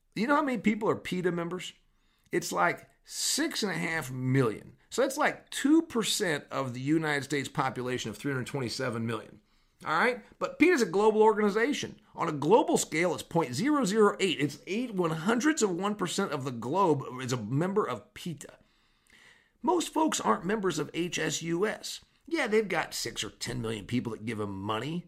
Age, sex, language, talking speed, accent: 50-69, male, English, 175 wpm, American